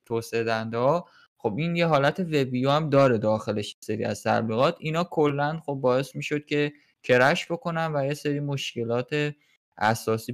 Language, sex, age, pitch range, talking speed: Persian, male, 20-39, 115-150 Hz, 150 wpm